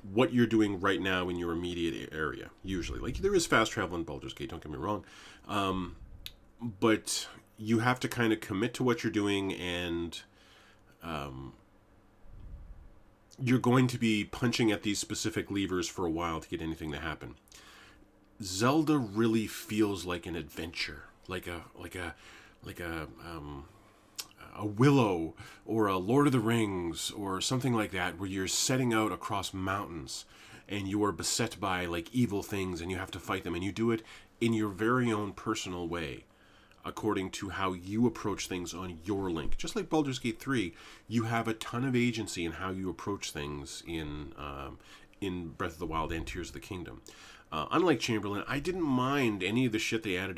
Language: English